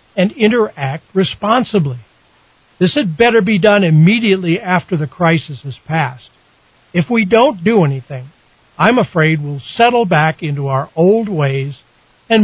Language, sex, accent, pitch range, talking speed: English, male, American, 140-200 Hz, 140 wpm